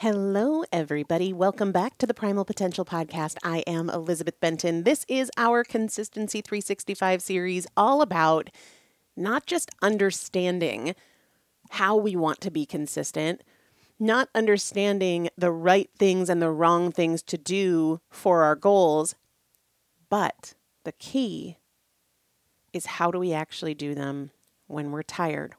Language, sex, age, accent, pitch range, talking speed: English, female, 30-49, American, 155-195 Hz, 135 wpm